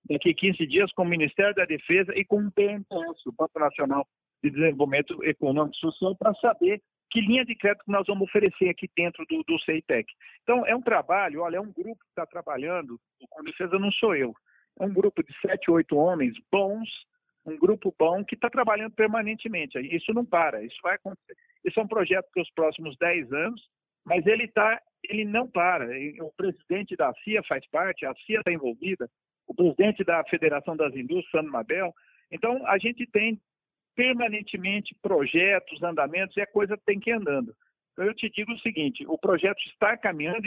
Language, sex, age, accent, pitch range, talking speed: Portuguese, male, 50-69, Brazilian, 170-220 Hz, 195 wpm